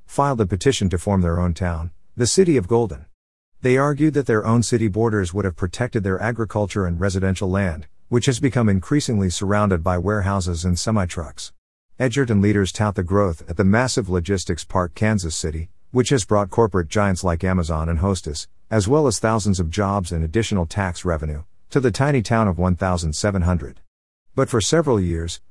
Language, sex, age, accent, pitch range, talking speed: English, male, 50-69, American, 90-115 Hz, 180 wpm